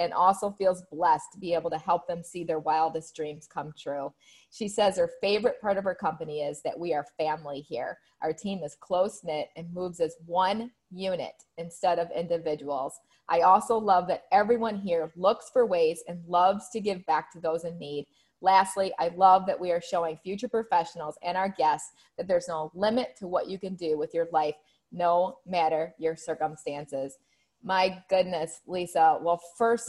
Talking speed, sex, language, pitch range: 185 wpm, female, English, 165-195 Hz